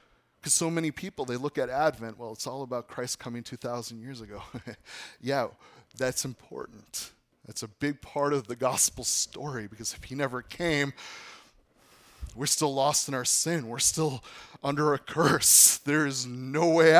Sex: male